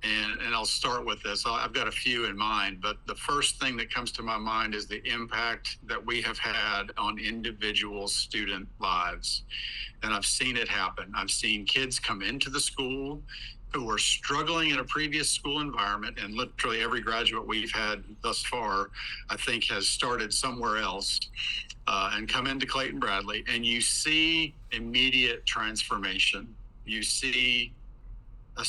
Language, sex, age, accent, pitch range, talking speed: English, male, 50-69, American, 110-130 Hz, 165 wpm